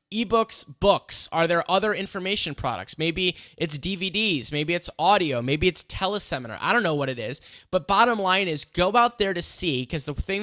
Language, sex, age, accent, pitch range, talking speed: English, male, 10-29, American, 140-185 Hz, 195 wpm